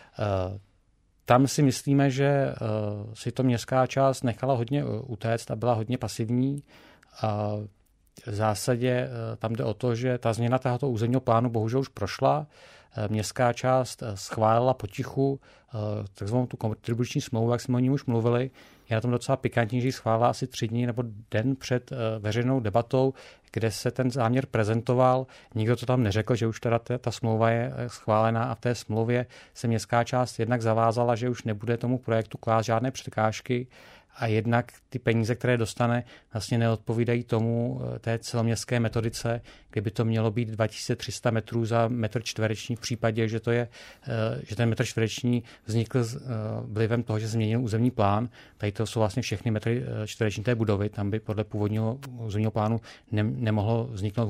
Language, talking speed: Czech, 160 wpm